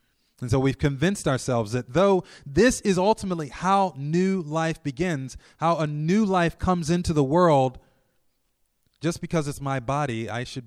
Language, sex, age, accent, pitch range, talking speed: English, male, 30-49, American, 110-140 Hz, 165 wpm